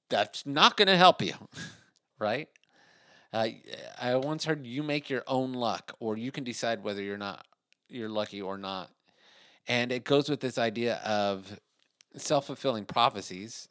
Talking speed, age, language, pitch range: 165 wpm, 30-49, English, 100-135 Hz